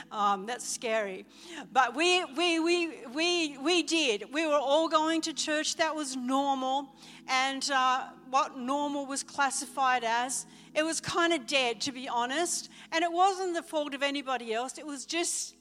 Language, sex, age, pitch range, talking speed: English, female, 60-79, 275-335 Hz, 175 wpm